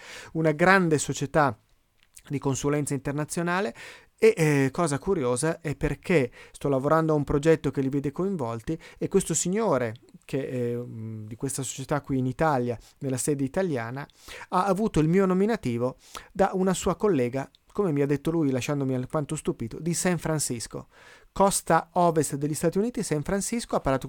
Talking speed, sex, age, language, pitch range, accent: 160 wpm, male, 30-49, Italian, 135-170 Hz, native